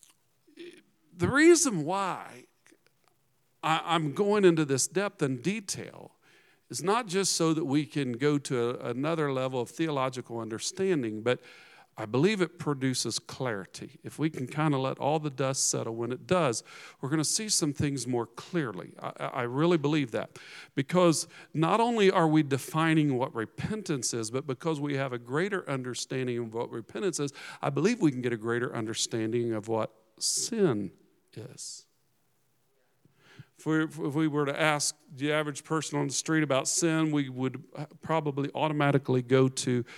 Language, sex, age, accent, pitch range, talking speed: English, male, 50-69, American, 125-160 Hz, 165 wpm